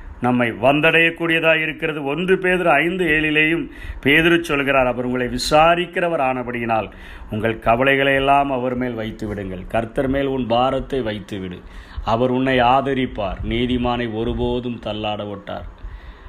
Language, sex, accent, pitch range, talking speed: Tamil, male, native, 115-155 Hz, 110 wpm